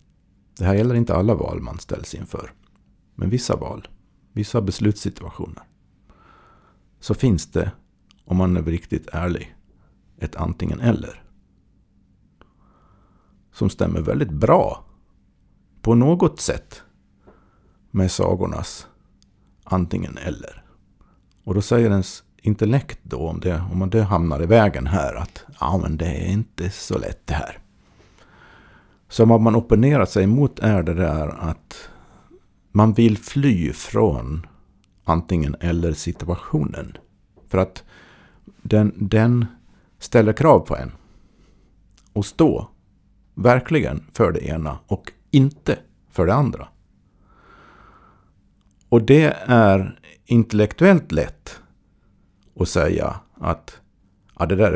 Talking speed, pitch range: 115 wpm, 85-110 Hz